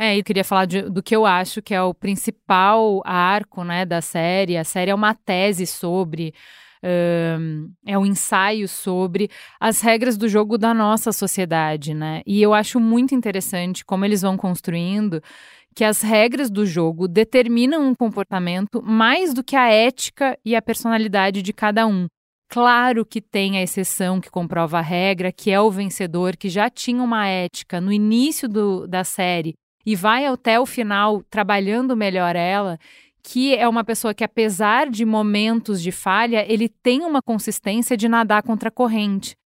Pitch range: 190-245 Hz